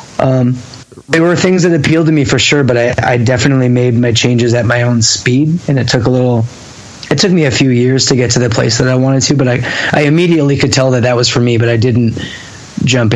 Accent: American